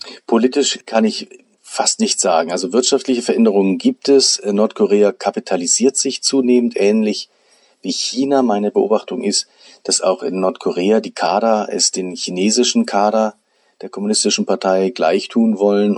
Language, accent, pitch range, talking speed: German, German, 95-130 Hz, 140 wpm